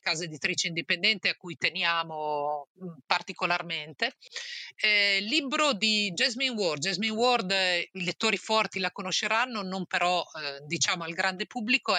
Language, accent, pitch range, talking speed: Italian, native, 165-205 Hz, 135 wpm